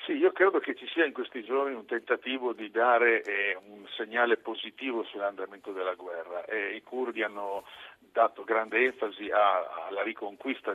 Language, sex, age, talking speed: Italian, male, 50-69, 160 wpm